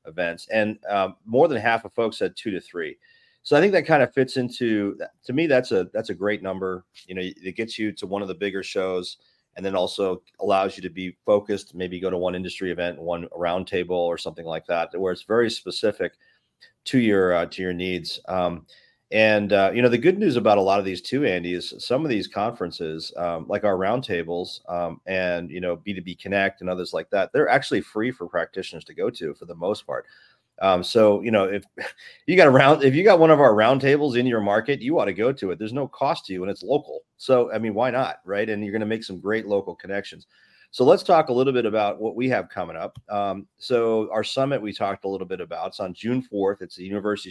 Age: 30-49